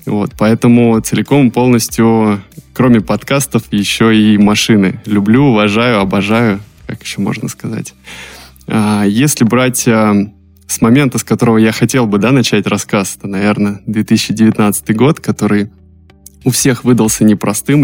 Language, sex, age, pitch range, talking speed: Russian, male, 20-39, 100-120 Hz, 125 wpm